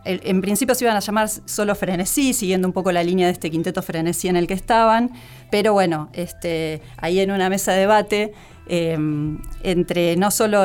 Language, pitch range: Spanish, 170-210 Hz